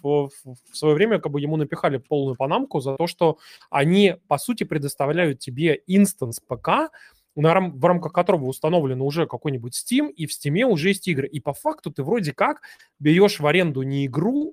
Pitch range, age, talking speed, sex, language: 135-180 Hz, 20-39, 185 wpm, male, Russian